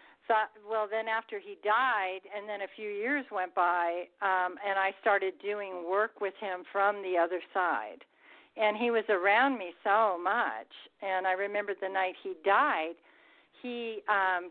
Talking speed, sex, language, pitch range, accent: 165 wpm, female, English, 190-230 Hz, American